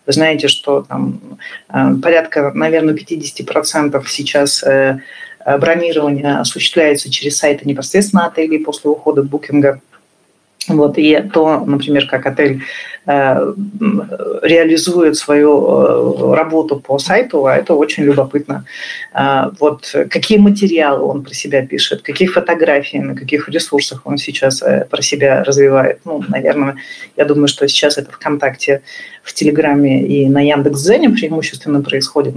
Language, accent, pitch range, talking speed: Russian, native, 145-185 Hz, 130 wpm